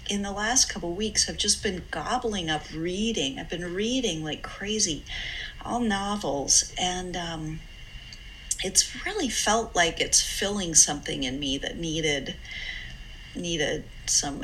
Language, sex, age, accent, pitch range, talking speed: English, female, 40-59, American, 155-200 Hz, 140 wpm